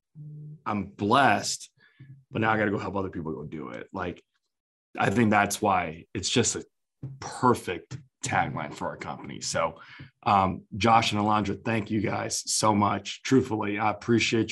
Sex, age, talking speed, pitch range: male, 20-39, 165 wpm, 100-125 Hz